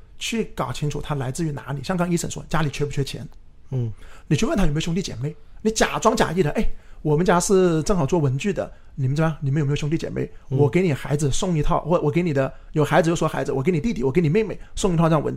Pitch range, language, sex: 140-185 Hz, Chinese, male